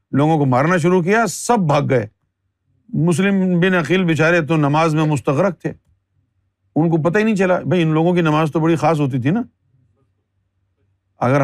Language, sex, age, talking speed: Urdu, male, 50-69, 185 wpm